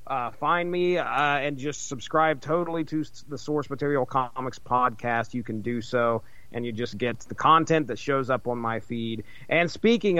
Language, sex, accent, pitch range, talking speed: English, male, American, 125-160 Hz, 190 wpm